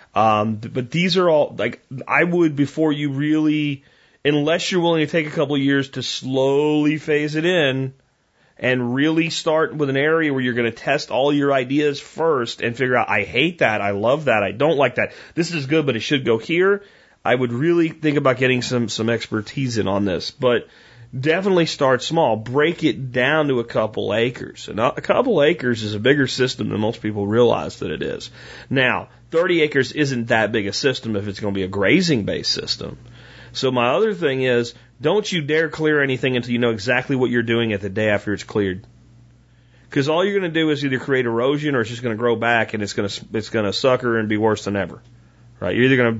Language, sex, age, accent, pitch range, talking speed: English, male, 30-49, American, 115-150 Hz, 220 wpm